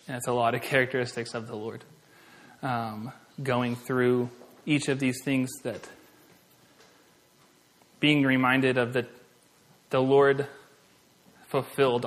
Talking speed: 120 wpm